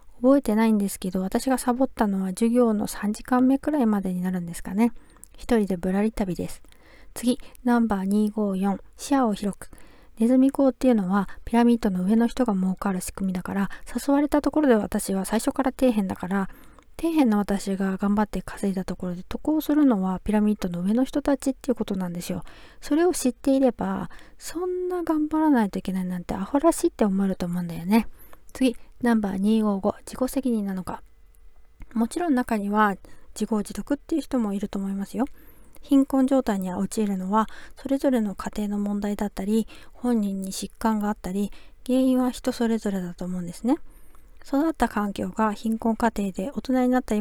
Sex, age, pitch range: female, 40-59, 195-255 Hz